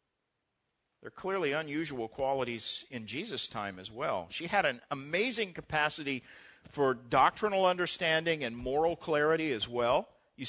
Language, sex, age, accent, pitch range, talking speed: English, male, 50-69, American, 135-195 Hz, 130 wpm